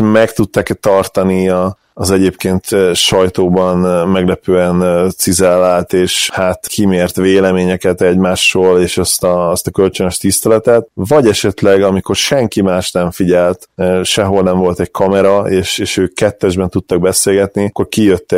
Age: 20-39